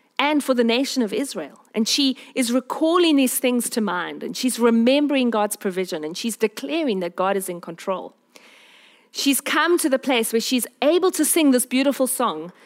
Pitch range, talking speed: 200-265 Hz, 190 wpm